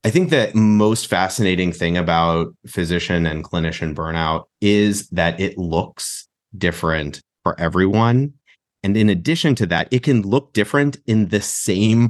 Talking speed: 150 wpm